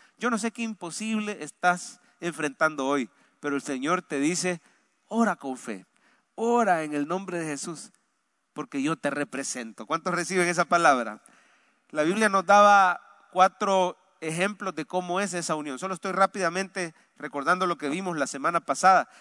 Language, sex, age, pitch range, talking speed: English, male, 40-59, 170-235 Hz, 160 wpm